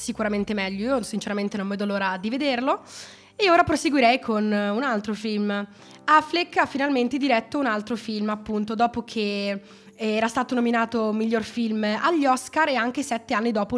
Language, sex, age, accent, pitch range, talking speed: Italian, female, 20-39, native, 205-255 Hz, 165 wpm